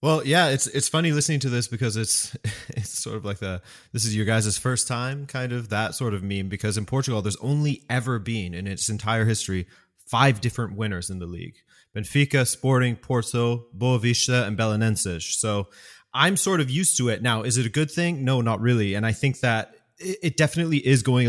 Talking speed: 210 wpm